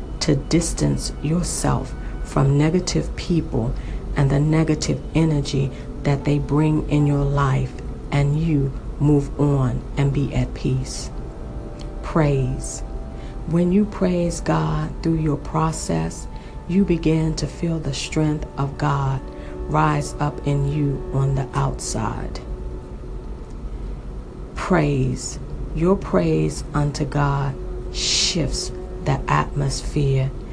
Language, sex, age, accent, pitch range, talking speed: English, female, 40-59, American, 130-155 Hz, 110 wpm